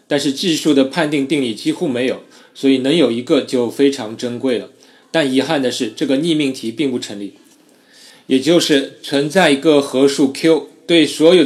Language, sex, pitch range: Chinese, male, 120-155 Hz